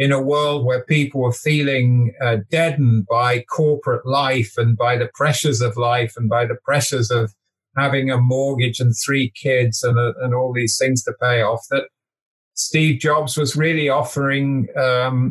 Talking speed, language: 175 wpm, English